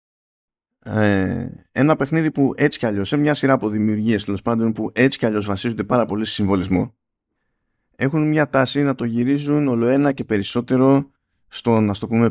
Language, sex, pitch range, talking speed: Greek, male, 100-125 Hz, 175 wpm